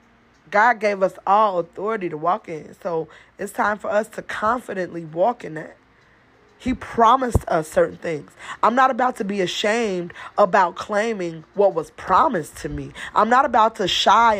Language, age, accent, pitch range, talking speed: English, 20-39, American, 175-215 Hz, 170 wpm